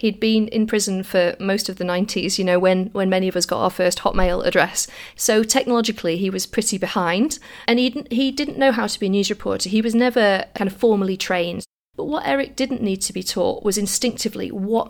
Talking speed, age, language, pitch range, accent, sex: 220 wpm, 40-59, English, 190-225 Hz, British, female